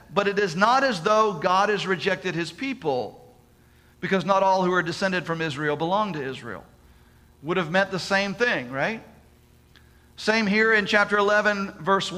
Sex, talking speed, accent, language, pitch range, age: male, 170 wpm, American, English, 150-205 Hz, 40-59